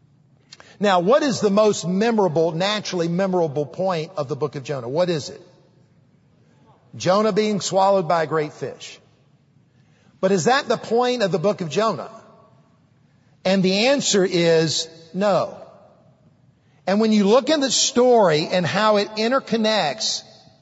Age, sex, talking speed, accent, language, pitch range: 50-69, male, 145 wpm, American, English, 150-205 Hz